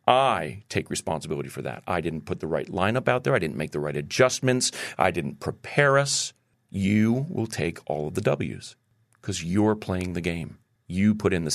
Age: 40-59